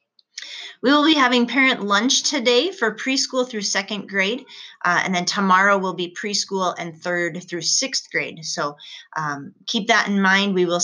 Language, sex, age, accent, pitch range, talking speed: English, female, 20-39, American, 180-235 Hz, 175 wpm